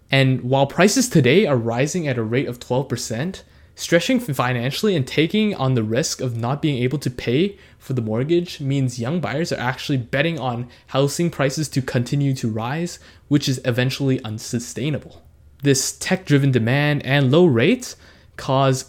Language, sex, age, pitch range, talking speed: English, male, 20-39, 115-145 Hz, 160 wpm